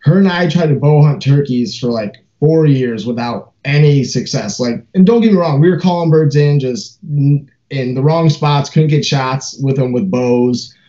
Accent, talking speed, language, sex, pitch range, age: American, 210 wpm, English, male, 125-145 Hz, 20-39